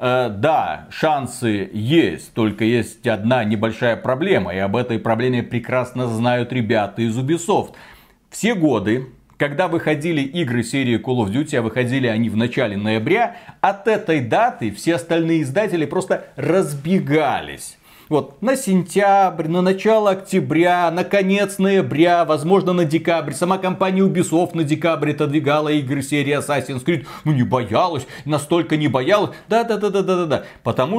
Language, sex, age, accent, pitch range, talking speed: Russian, male, 40-59, native, 120-175 Hz, 145 wpm